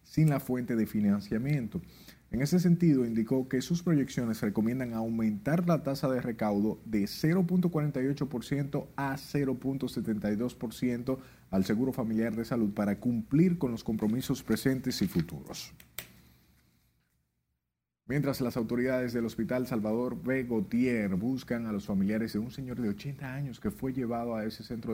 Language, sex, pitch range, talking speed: Spanish, male, 105-140 Hz, 140 wpm